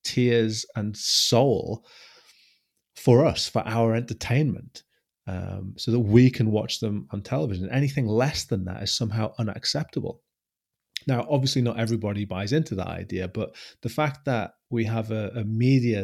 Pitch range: 100-125 Hz